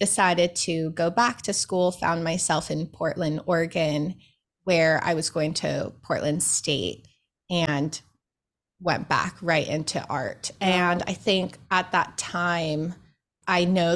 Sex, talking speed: female, 140 wpm